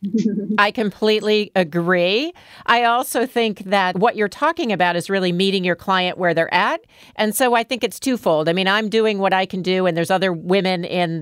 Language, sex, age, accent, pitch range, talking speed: English, female, 40-59, American, 175-215 Hz, 205 wpm